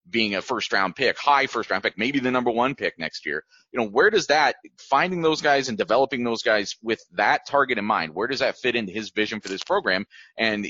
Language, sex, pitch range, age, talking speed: English, male, 105-140 Hz, 30-49, 235 wpm